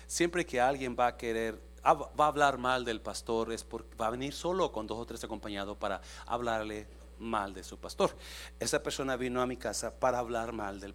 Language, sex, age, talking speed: Spanish, male, 40-59, 215 wpm